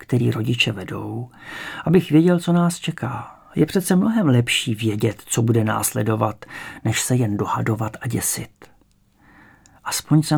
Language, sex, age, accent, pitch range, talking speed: English, male, 40-59, Czech, 115-145 Hz, 140 wpm